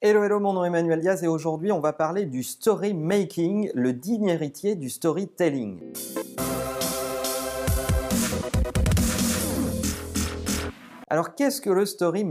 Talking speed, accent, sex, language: 120 wpm, French, male, French